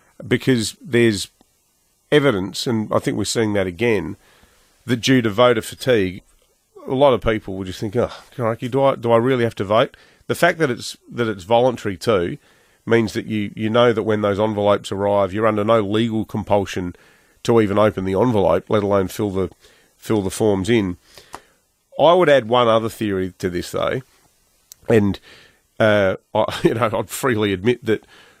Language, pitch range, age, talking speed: English, 100-120 Hz, 40-59, 180 wpm